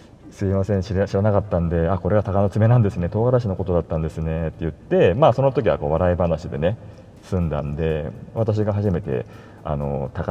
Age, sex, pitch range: 40-59, male, 80-120 Hz